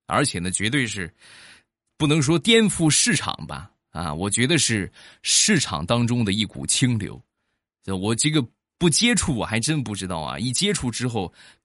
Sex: male